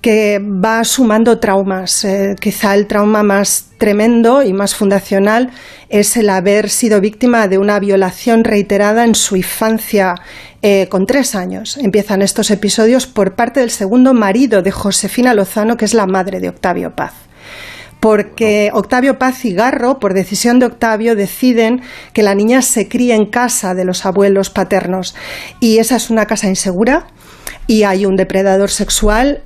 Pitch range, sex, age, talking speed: 195-235 Hz, female, 40-59, 160 wpm